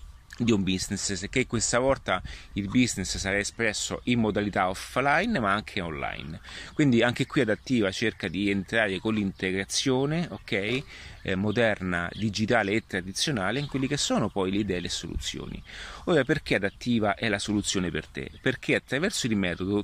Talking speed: 160 wpm